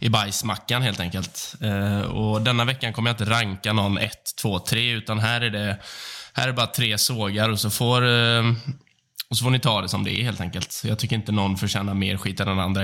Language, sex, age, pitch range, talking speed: Swedish, male, 10-29, 100-125 Hz, 235 wpm